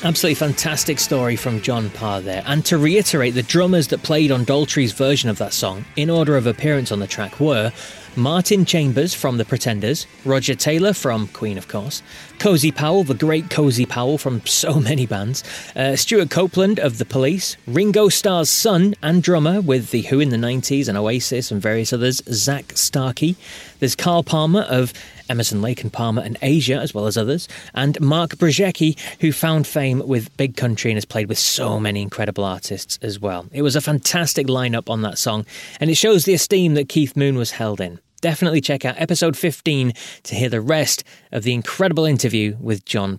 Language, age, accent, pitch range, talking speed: English, 30-49, British, 115-165 Hz, 195 wpm